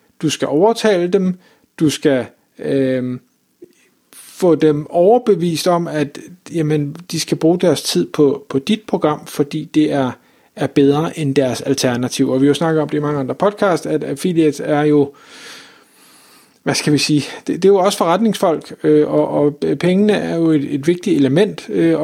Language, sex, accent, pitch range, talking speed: Danish, male, native, 140-180 Hz, 180 wpm